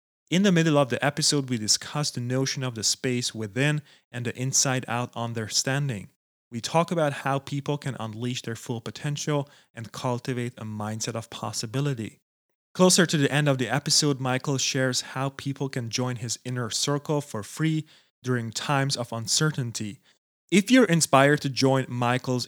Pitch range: 120-140 Hz